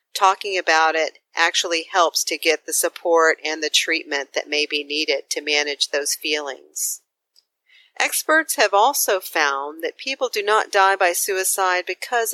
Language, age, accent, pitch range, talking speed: English, 40-59, American, 160-240 Hz, 155 wpm